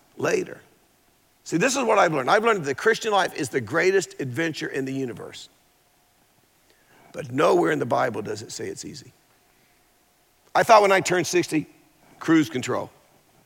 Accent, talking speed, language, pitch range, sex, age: American, 170 wpm, English, 145-175 Hz, male, 50-69